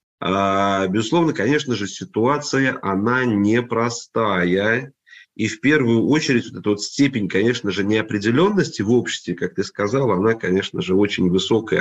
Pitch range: 95-120 Hz